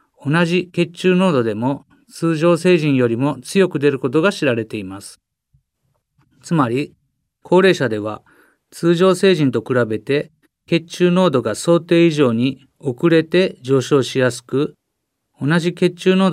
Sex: male